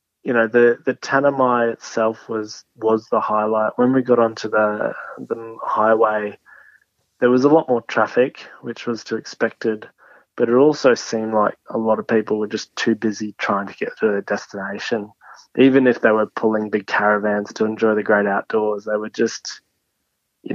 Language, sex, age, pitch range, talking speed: English, male, 20-39, 105-120 Hz, 180 wpm